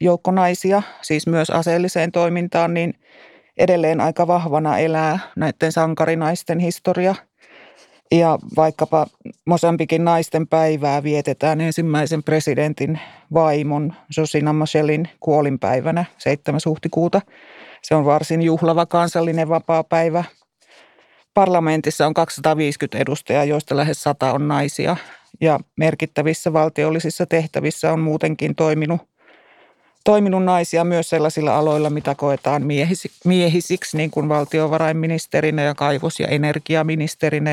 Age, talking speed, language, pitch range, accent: 30-49, 105 wpm, Finnish, 150-170 Hz, native